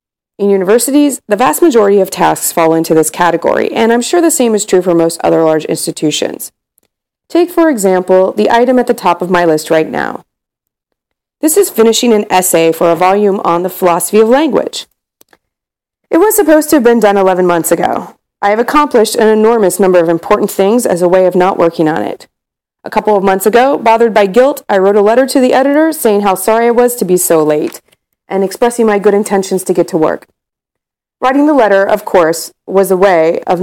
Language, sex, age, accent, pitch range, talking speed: English, female, 30-49, American, 180-250 Hz, 210 wpm